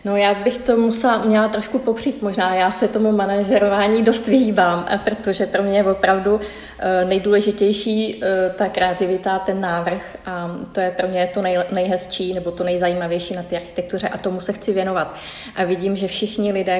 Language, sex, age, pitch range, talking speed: Czech, female, 20-39, 180-195 Hz, 175 wpm